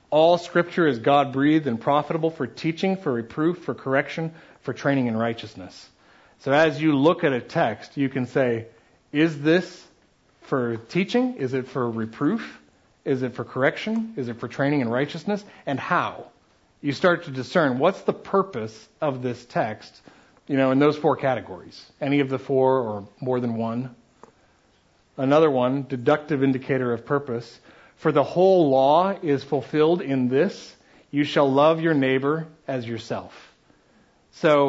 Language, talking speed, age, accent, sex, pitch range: English, 160 wpm, 40-59, American, male, 115-150 Hz